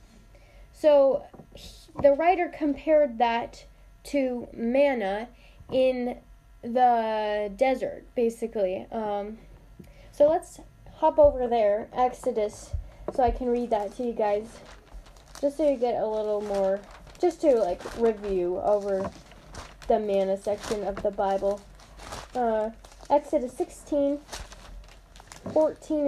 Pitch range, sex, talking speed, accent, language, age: 230-290 Hz, female, 110 wpm, American, English, 10-29